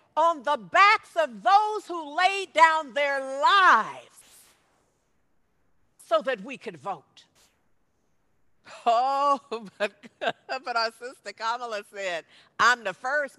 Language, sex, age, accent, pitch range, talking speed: English, female, 50-69, American, 230-335 Hz, 110 wpm